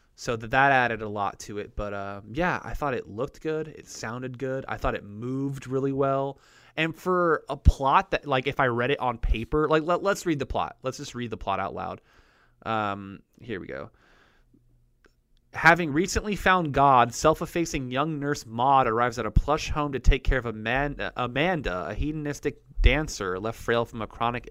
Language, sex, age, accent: English, male, 20-39, American